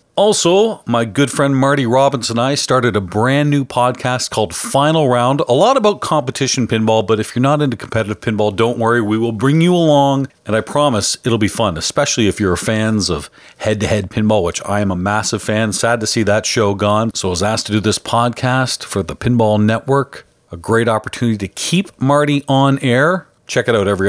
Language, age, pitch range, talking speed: English, 40-59, 105-145 Hz, 210 wpm